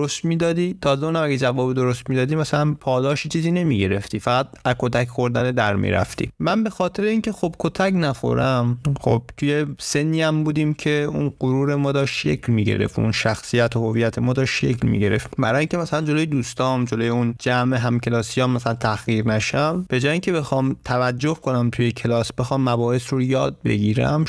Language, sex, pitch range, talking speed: Persian, male, 120-145 Hz, 175 wpm